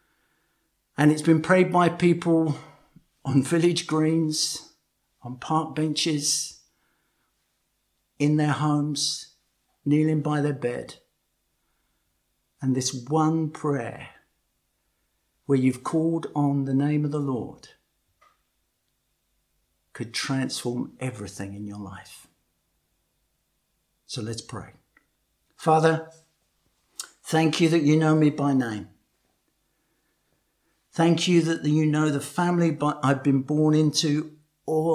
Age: 50-69